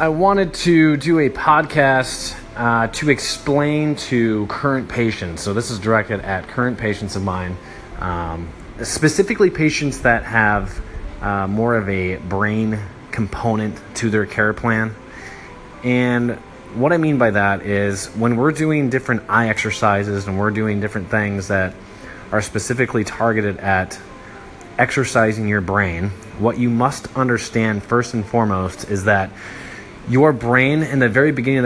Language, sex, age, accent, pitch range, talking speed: English, male, 20-39, American, 100-125 Hz, 150 wpm